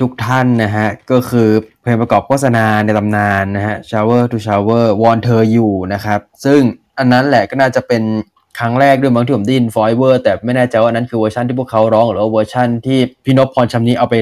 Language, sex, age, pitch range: Thai, male, 20-39, 110-125 Hz